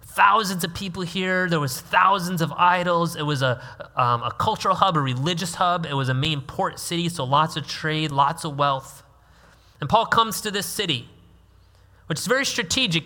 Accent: American